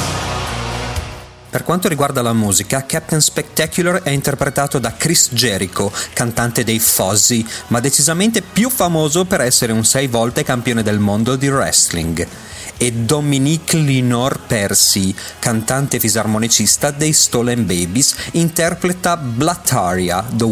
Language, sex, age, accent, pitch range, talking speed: Italian, male, 30-49, native, 110-160 Hz, 120 wpm